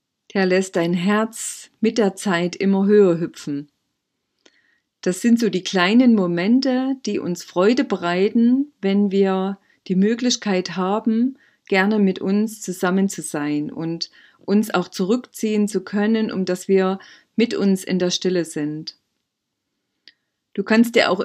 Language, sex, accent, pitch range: German, female, German, 185-220 Hz